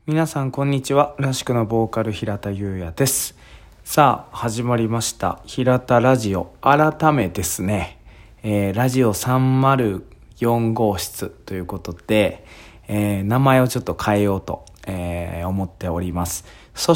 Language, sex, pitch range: Japanese, male, 95-130 Hz